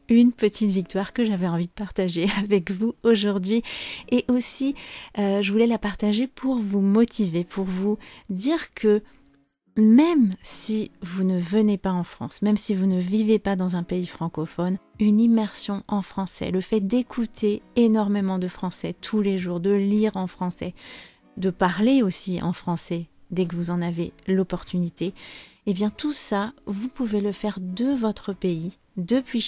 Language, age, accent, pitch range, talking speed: French, 40-59, French, 180-220 Hz, 170 wpm